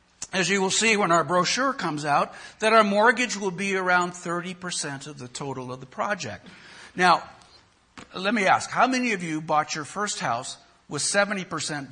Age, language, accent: 60-79, English, American